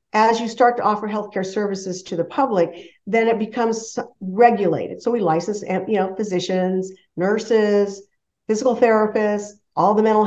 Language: English